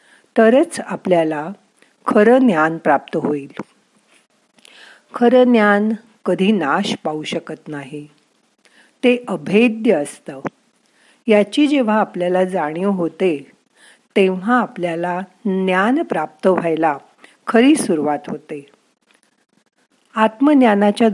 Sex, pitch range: female, 165-230 Hz